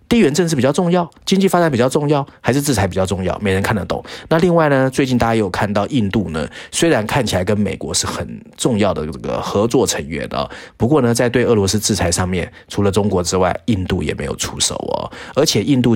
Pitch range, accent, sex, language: 95-115 Hz, native, male, Chinese